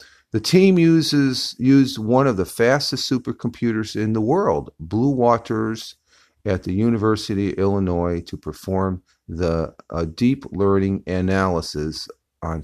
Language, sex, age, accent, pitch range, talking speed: English, male, 50-69, American, 85-110 Hz, 130 wpm